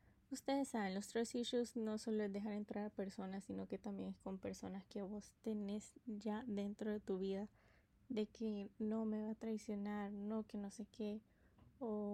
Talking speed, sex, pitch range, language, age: 195 wpm, female, 205-225 Hz, Spanish, 20-39